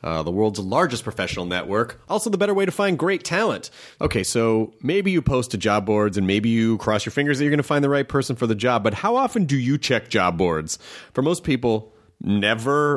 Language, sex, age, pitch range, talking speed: English, male, 30-49, 100-145 Hz, 235 wpm